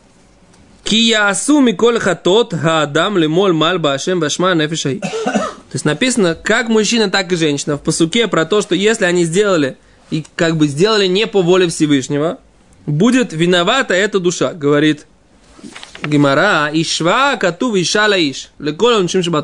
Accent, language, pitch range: native, Russian, 160-215 Hz